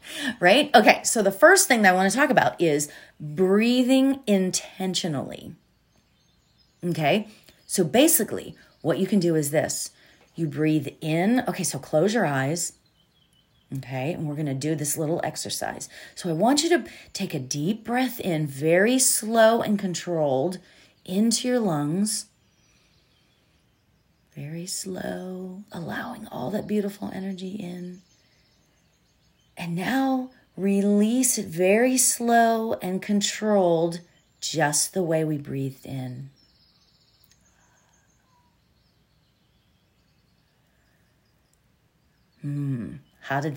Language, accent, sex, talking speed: English, American, female, 115 wpm